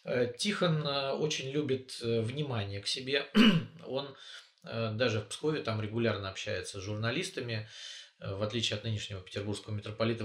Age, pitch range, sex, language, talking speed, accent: 20-39, 105-140 Hz, male, Russian, 125 wpm, native